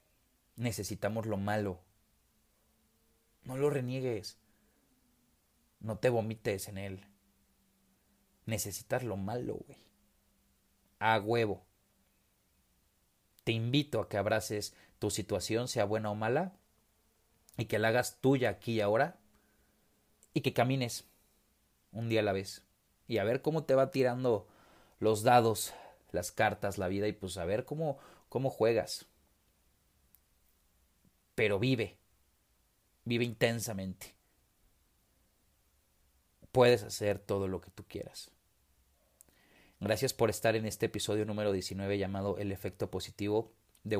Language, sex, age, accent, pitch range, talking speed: Spanish, male, 40-59, Mexican, 95-115 Hz, 120 wpm